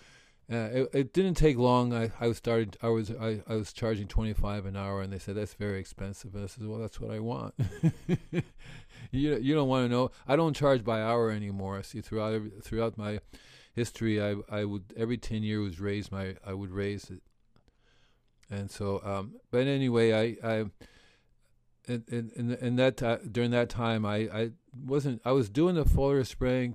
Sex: male